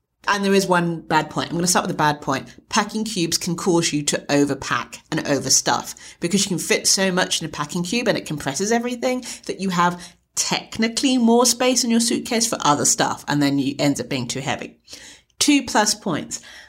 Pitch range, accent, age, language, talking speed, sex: 150-215 Hz, British, 30-49, English, 215 wpm, female